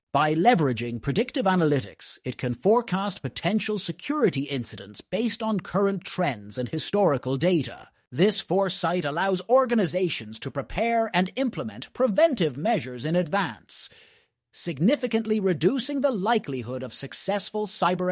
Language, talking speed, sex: English, 120 wpm, male